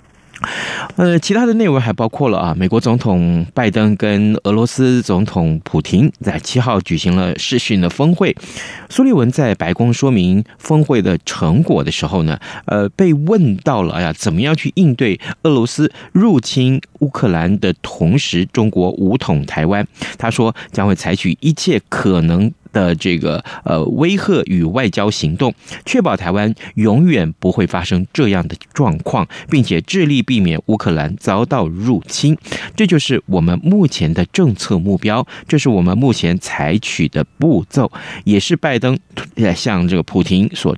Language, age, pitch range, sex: Chinese, 30-49, 90-150 Hz, male